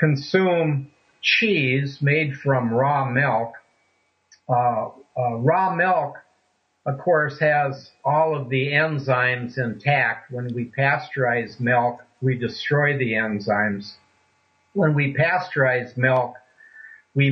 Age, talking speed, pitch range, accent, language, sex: 60-79, 105 wpm, 120-155 Hz, American, English, male